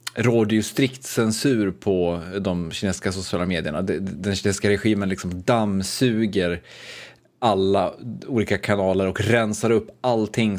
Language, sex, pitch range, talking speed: Swedish, male, 95-115 Hz, 120 wpm